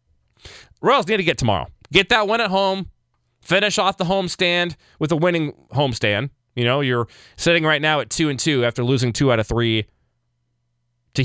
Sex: male